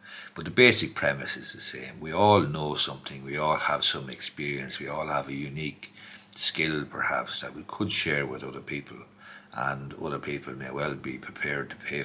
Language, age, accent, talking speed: English, 60-79, Irish, 195 wpm